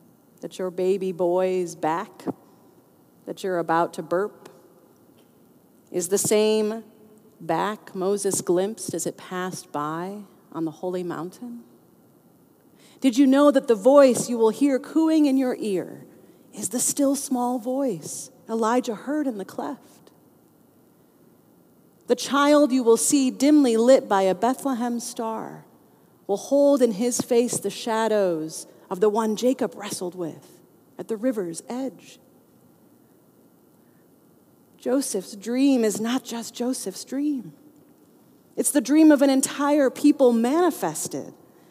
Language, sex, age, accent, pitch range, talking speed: English, female, 40-59, American, 190-260 Hz, 130 wpm